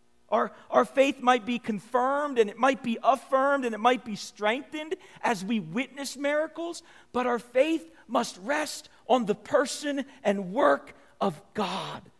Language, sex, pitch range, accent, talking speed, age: English, male, 170-235 Hz, American, 155 wpm, 50-69